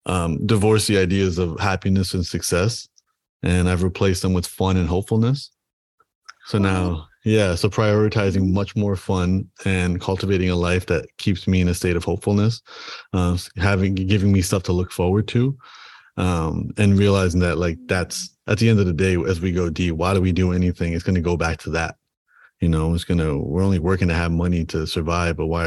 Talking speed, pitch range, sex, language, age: 205 wpm, 90-105 Hz, male, English, 30-49